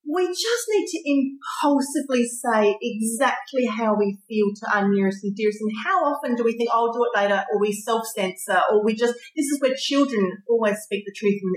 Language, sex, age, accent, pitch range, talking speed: English, female, 30-49, Australian, 200-265 Hz, 215 wpm